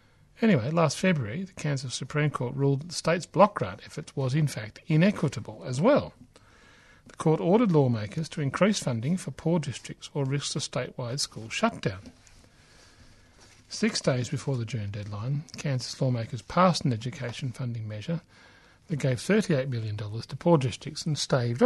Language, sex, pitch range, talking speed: English, male, 120-155 Hz, 160 wpm